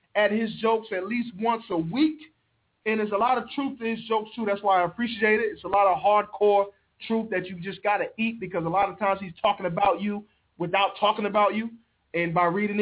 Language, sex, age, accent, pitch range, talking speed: English, male, 20-39, American, 190-230 Hz, 235 wpm